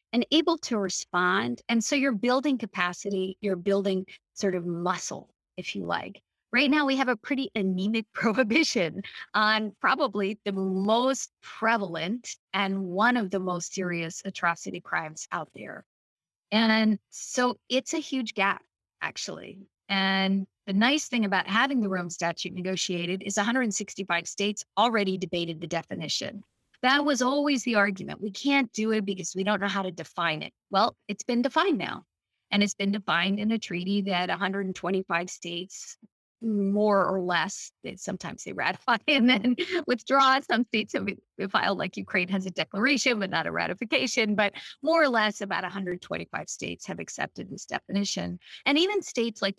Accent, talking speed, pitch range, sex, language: American, 160 wpm, 185-240 Hz, female, English